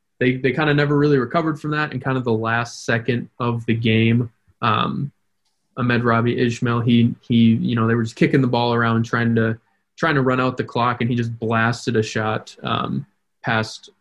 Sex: male